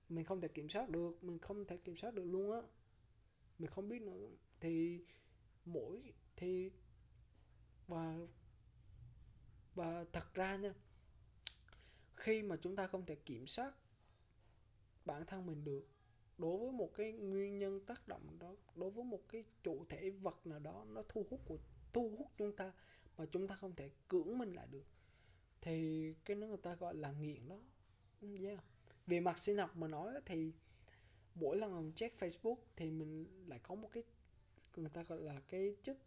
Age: 20-39